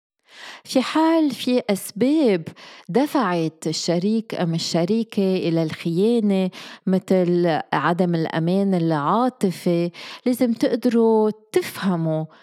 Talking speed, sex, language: 80 wpm, female, Arabic